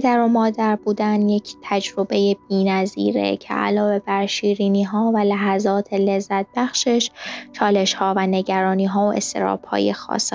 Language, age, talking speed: Persian, 10-29, 140 wpm